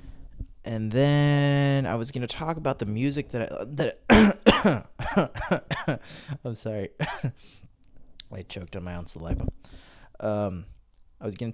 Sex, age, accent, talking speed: male, 20-39, American, 125 wpm